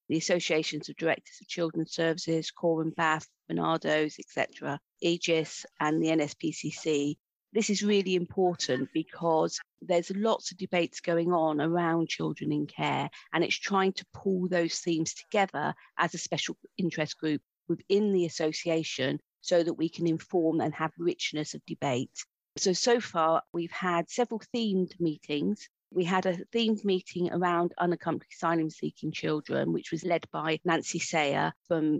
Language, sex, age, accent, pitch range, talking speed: English, female, 40-59, British, 155-180 Hz, 150 wpm